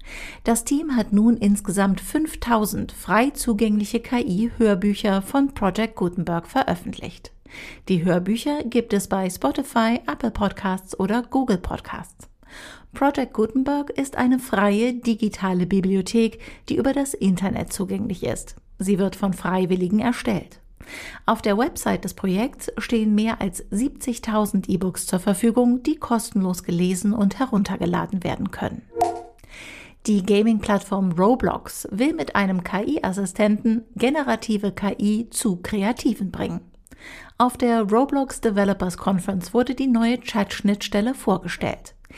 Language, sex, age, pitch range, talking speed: German, female, 50-69, 195-245 Hz, 120 wpm